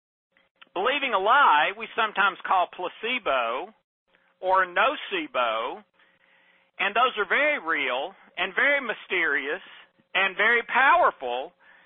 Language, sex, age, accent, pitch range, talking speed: English, male, 50-69, American, 190-250 Hz, 100 wpm